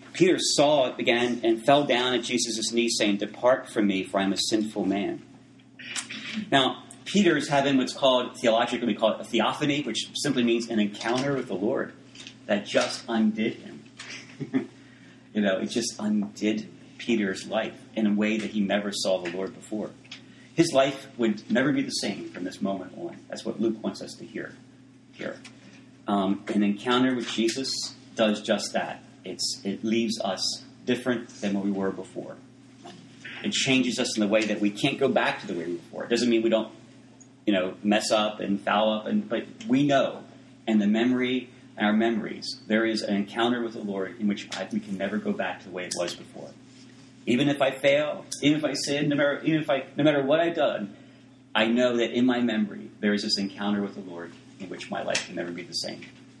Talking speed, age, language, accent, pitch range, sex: 205 wpm, 40-59, English, American, 105-130 Hz, male